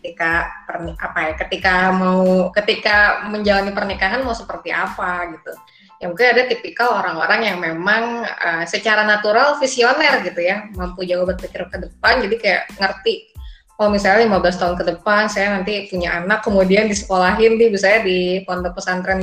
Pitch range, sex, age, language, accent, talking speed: 180-230 Hz, female, 20-39, Indonesian, native, 160 wpm